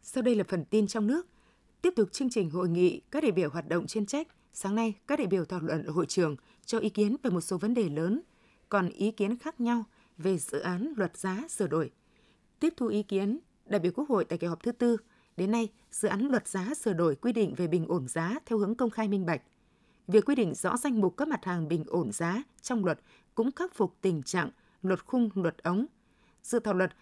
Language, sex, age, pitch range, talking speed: Vietnamese, female, 20-39, 180-240 Hz, 240 wpm